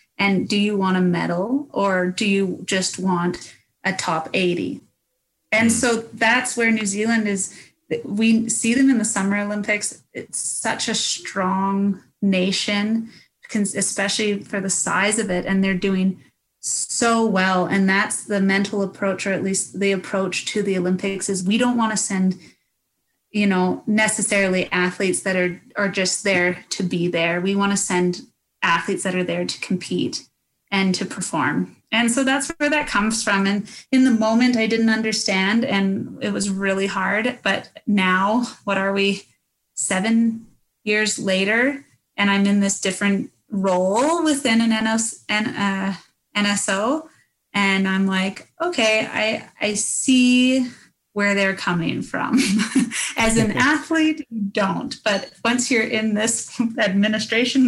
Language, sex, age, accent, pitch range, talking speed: English, female, 30-49, American, 195-225 Hz, 150 wpm